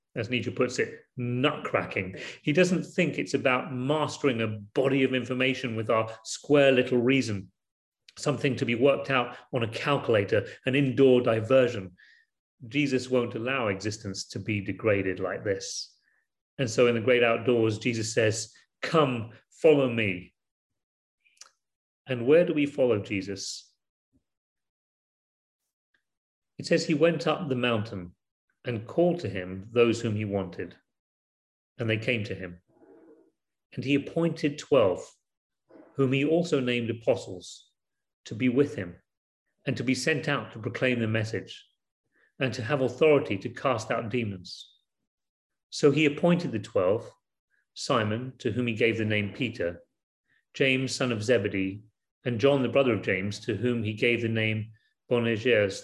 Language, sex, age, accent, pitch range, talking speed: English, male, 40-59, British, 110-140 Hz, 145 wpm